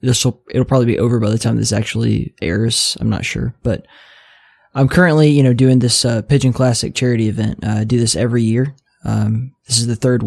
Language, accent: English, American